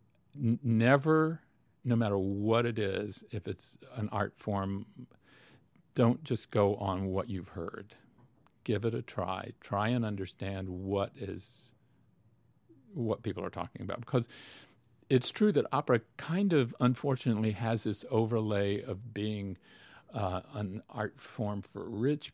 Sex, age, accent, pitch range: male, 50-69, American, 100-125 Hz